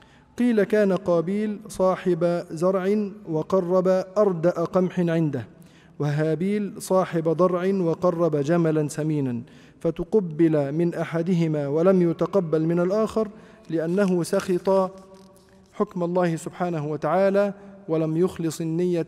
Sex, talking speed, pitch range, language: male, 100 wpm, 160-190 Hz, Arabic